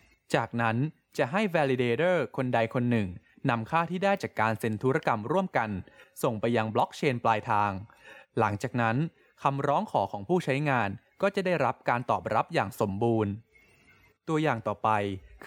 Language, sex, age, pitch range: Thai, male, 20-39, 110-150 Hz